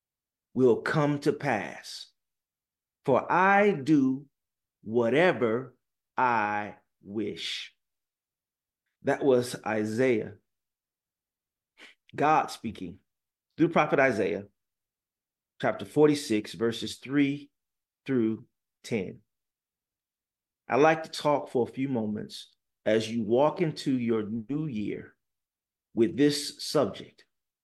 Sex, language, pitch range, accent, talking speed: male, English, 115-155 Hz, American, 90 wpm